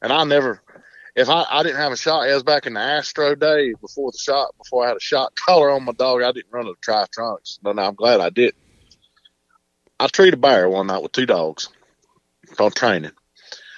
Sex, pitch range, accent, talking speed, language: male, 100-145 Hz, American, 220 wpm, English